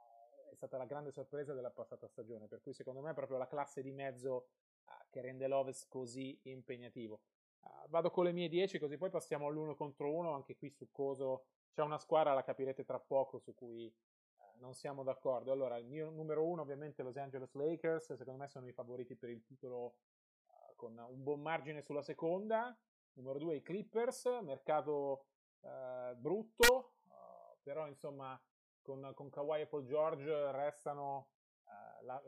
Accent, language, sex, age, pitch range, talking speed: native, Italian, male, 30-49, 130-160 Hz, 180 wpm